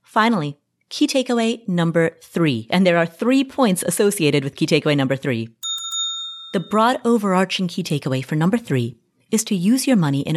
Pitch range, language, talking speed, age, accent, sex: 155-220 Hz, English, 175 wpm, 30-49, American, female